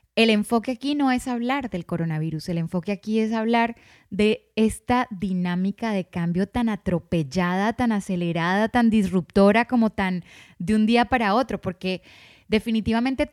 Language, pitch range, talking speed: Spanish, 185-235 Hz, 150 wpm